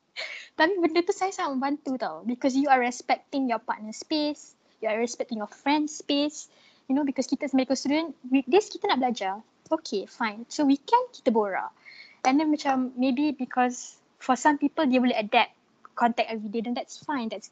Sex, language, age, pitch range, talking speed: female, Malay, 20-39, 230-295 Hz, 190 wpm